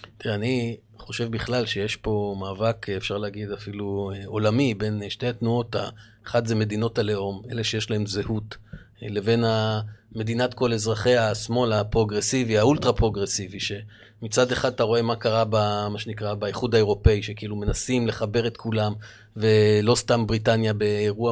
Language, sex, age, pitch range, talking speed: Hebrew, male, 30-49, 110-135 Hz, 140 wpm